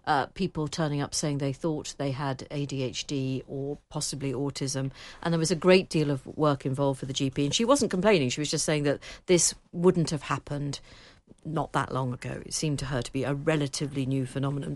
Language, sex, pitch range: English, female, 135-165 Hz